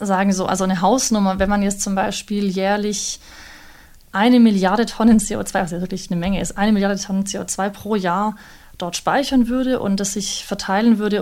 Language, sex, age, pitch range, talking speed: German, female, 30-49, 190-215 Hz, 180 wpm